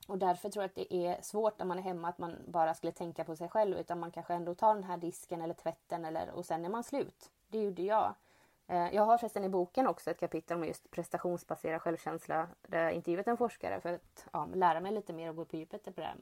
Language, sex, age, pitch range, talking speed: English, female, 20-39, 170-190 Hz, 255 wpm